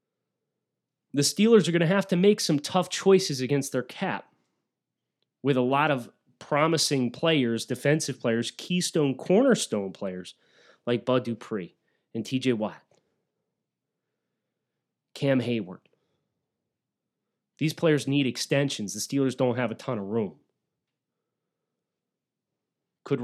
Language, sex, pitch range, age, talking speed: English, male, 125-150 Hz, 30-49, 120 wpm